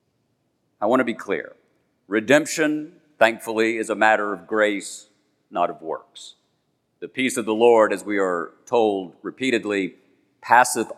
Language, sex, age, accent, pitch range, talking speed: English, male, 50-69, American, 110-150 Hz, 140 wpm